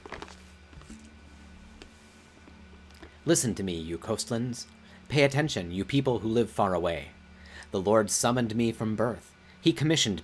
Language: English